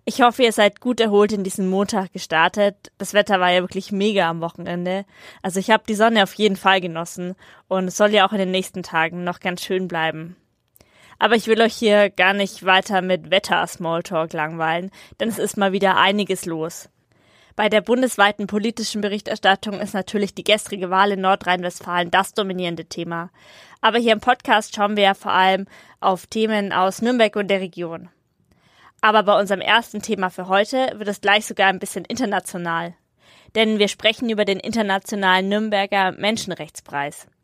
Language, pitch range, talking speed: German, 185-215 Hz, 180 wpm